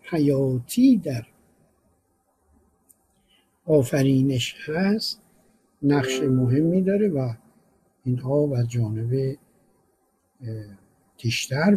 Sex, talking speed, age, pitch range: male, 65 wpm, 60-79, 125-170 Hz